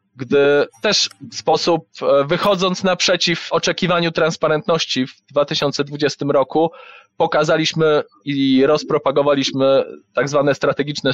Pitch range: 140-175 Hz